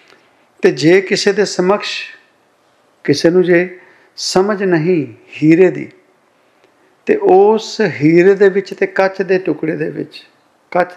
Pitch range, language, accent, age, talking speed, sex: 160-200 Hz, English, Indian, 50-69, 130 wpm, male